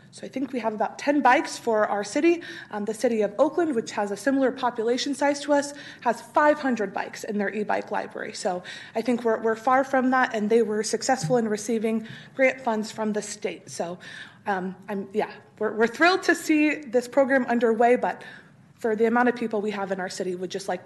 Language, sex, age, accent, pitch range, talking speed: English, female, 30-49, American, 210-270 Hz, 220 wpm